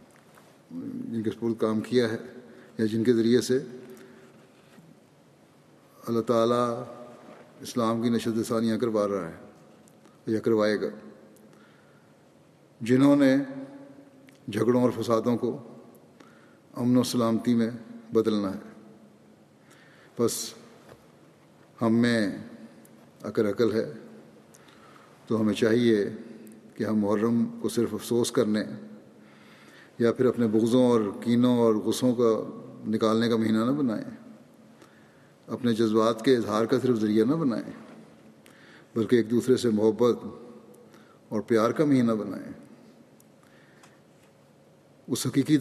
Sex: male